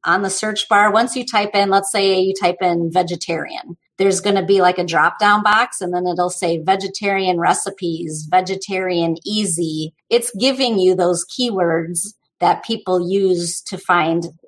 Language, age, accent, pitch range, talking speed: English, 30-49, American, 175-200 Hz, 170 wpm